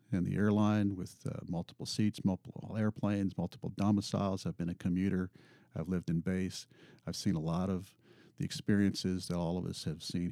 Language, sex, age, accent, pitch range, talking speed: English, male, 50-69, American, 90-110 Hz, 185 wpm